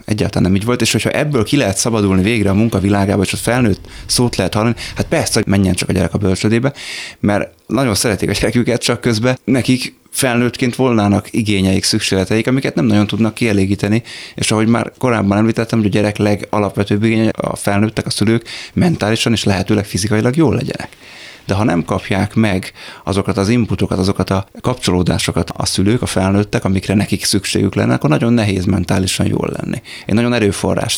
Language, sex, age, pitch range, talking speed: Hungarian, male, 20-39, 95-115 Hz, 180 wpm